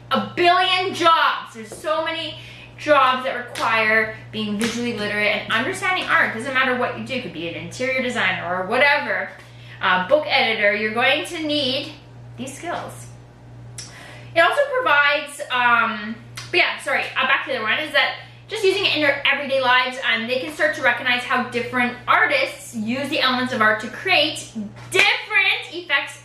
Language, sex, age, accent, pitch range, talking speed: English, female, 10-29, American, 220-295 Hz, 180 wpm